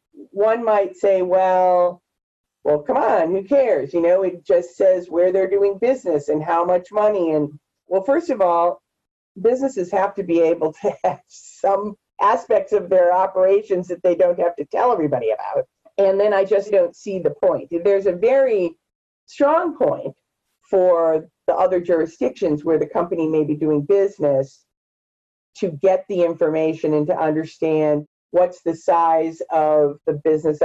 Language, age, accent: English, 40-59, American